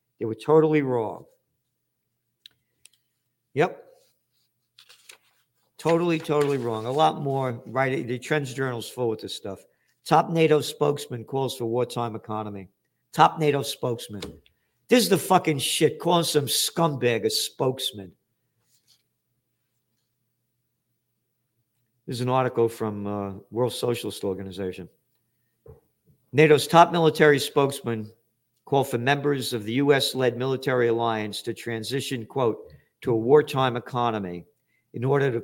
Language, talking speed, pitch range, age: English, 120 wpm, 115-145 Hz, 50-69